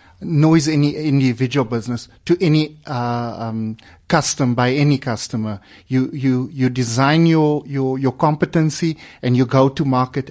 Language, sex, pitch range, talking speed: English, male, 115-150 Hz, 145 wpm